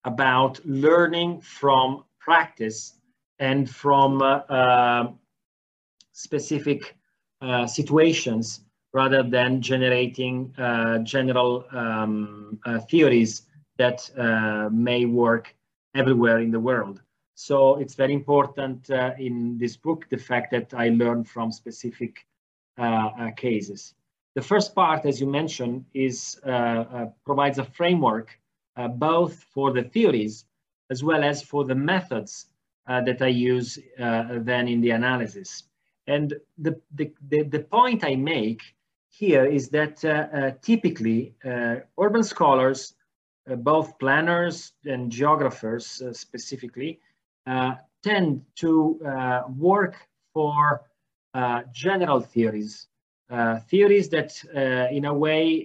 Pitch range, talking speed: 120-150 Hz, 125 wpm